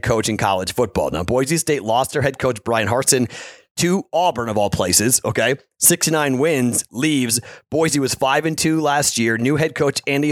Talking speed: 190 wpm